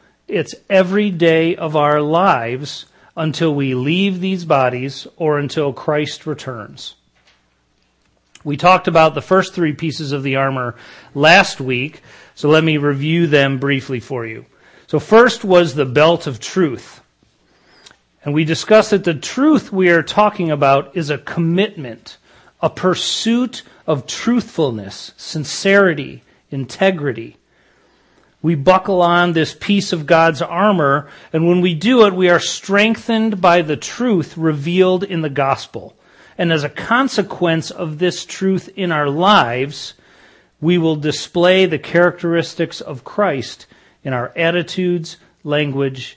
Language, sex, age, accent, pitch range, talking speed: English, male, 40-59, American, 145-185 Hz, 135 wpm